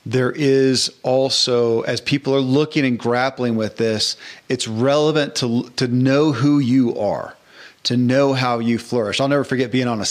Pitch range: 115-145 Hz